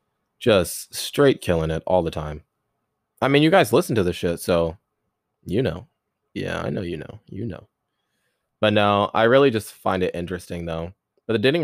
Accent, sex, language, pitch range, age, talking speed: American, male, English, 85-110 Hz, 20-39, 190 wpm